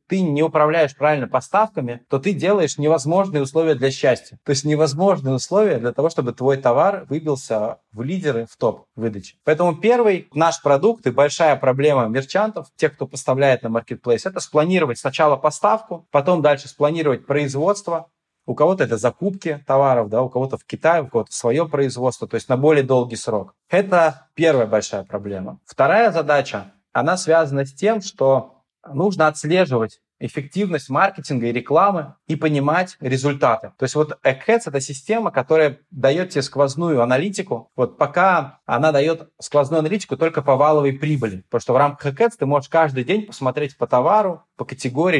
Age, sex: 20-39, male